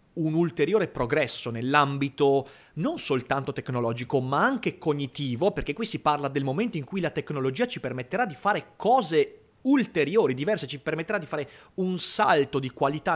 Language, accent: Italian, native